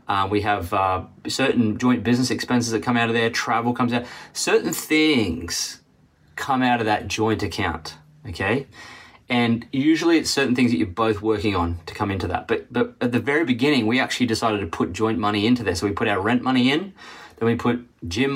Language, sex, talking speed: English, male, 210 wpm